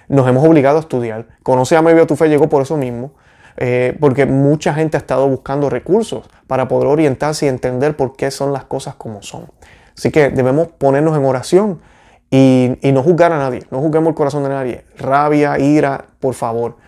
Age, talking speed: 30-49, 200 wpm